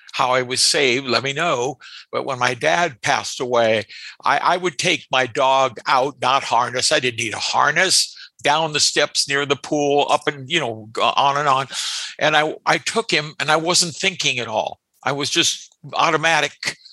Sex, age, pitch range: male, 60-79, 125-150 Hz